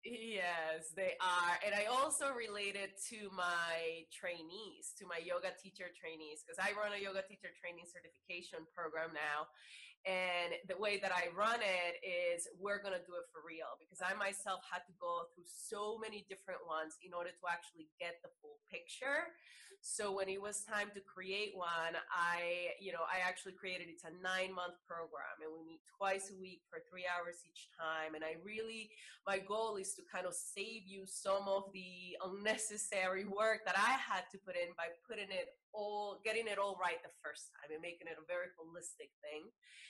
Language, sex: English, female